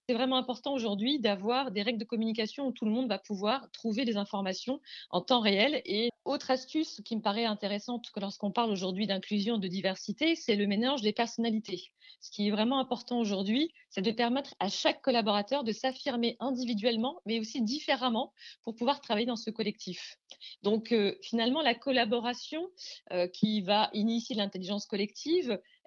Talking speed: 175 wpm